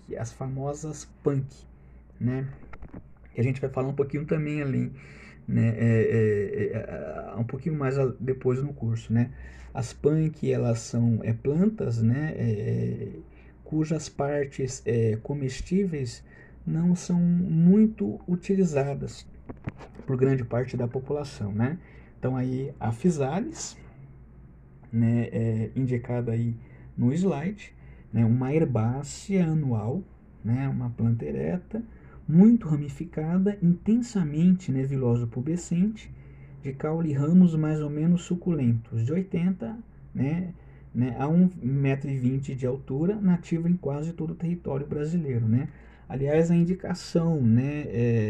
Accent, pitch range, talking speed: Brazilian, 115-160 Hz, 120 wpm